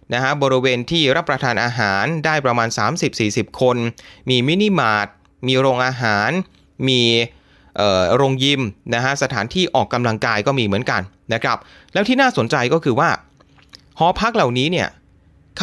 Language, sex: Thai, male